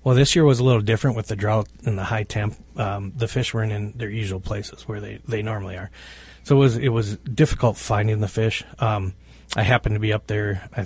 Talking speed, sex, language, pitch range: 245 wpm, male, English, 100-115 Hz